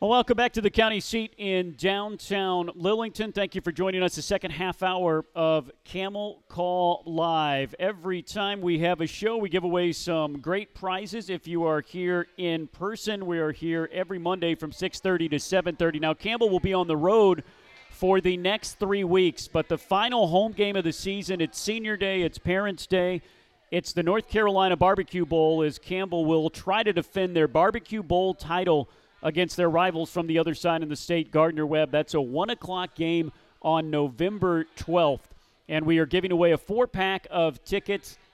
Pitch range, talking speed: 160-195 Hz, 185 wpm